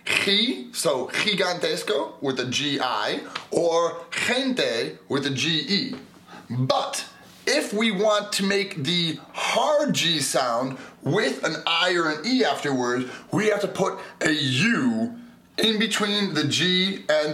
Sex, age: male, 30-49